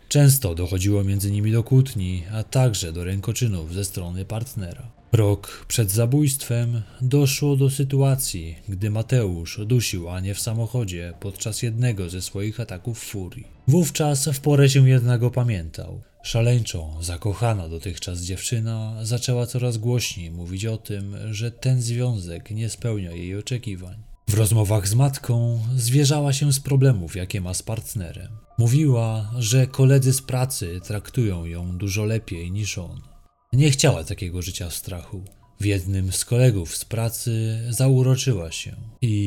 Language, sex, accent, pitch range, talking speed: Polish, male, native, 100-125 Hz, 140 wpm